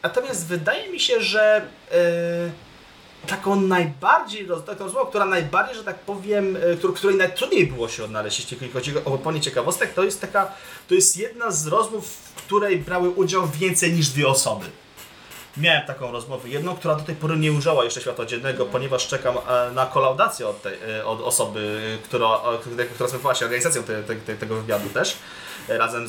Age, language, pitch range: 30-49, Polish, 135-185 Hz